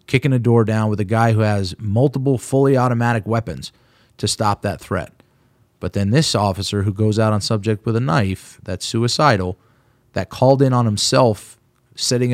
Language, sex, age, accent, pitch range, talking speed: English, male, 30-49, American, 100-120 Hz, 180 wpm